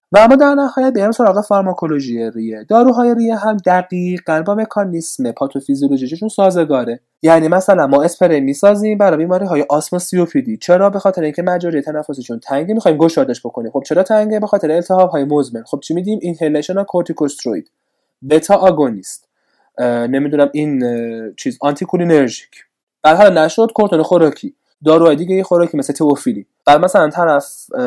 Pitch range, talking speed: 130-180 Hz, 140 wpm